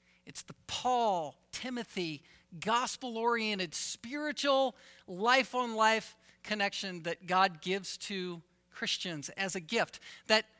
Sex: male